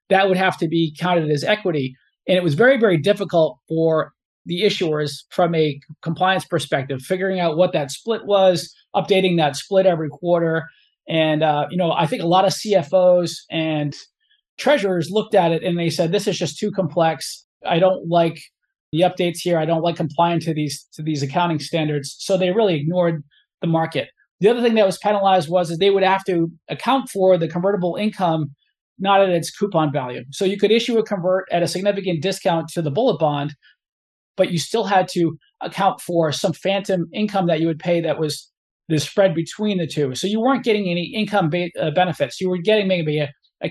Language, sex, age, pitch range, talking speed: English, male, 20-39, 160-195 Hz, 205 wpm